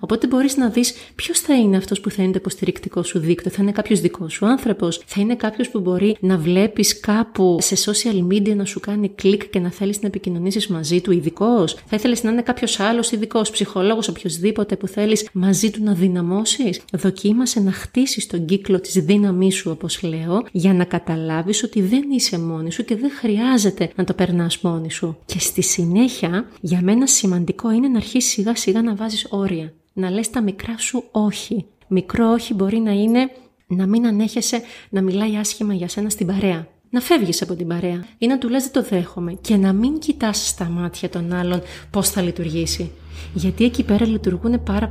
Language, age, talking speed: Greek, 30-49, 195 wpm